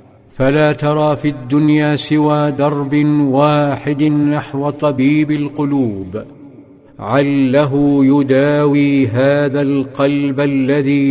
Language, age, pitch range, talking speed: Arabic, 50-69, 135-150 Hz, 80 wpm